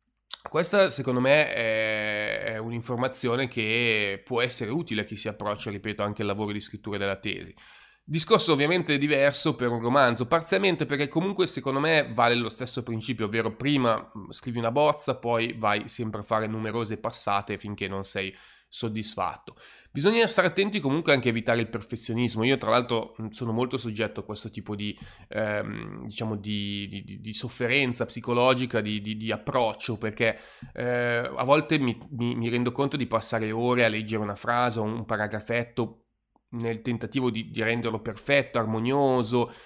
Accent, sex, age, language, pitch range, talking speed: native, male, 30-49, Italian, 110-125 Hz, 165 wpm